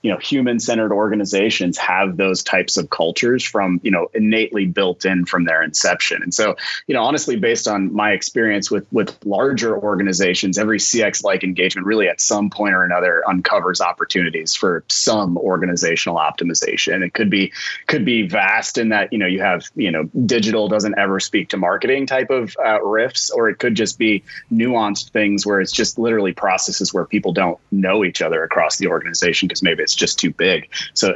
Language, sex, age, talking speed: English, male, 30-49, 195 wpm